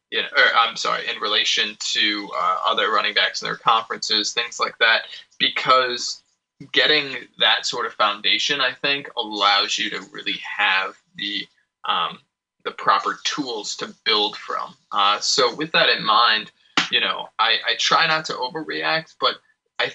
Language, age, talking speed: English, 20-39, 165 wpm